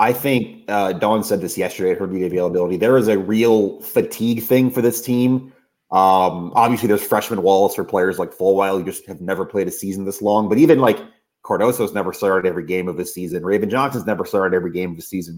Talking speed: 235 wpm